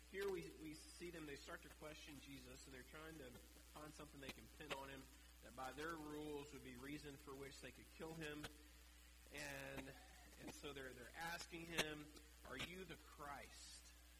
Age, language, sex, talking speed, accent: 30-49, English, male, 190 wpm, American